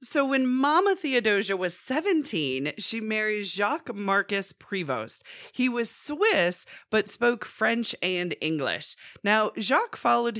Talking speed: 125 wpm